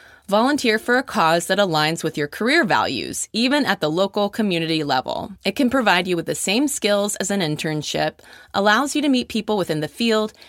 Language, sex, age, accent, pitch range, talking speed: English, female, 20-39, American, 165-230 Hz, 200 wpm